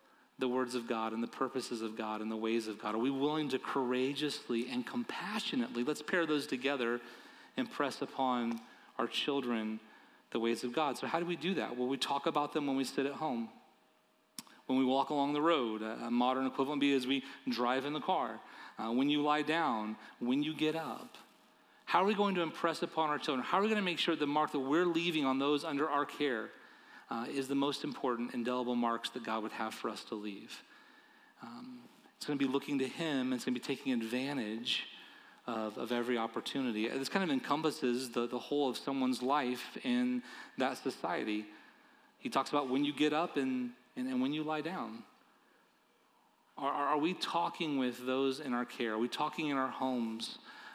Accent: American